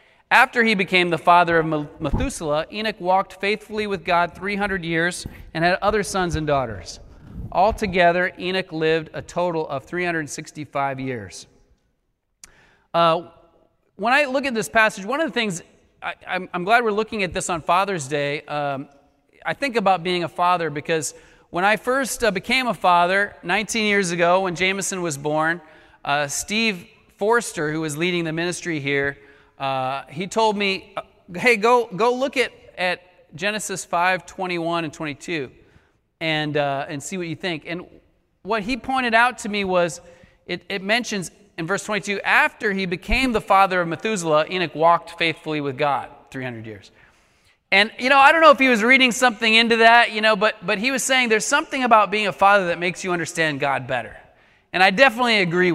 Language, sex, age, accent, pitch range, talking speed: English, male, 30-49, American, 160-215 Hz, 175 wpm